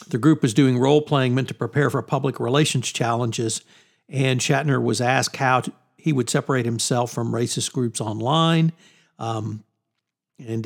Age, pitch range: 60-79, 130-165 Hz